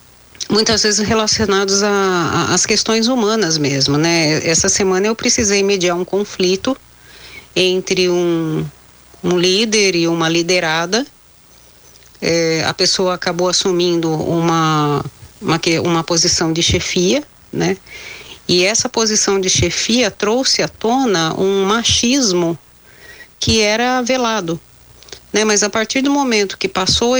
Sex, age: female, 40-59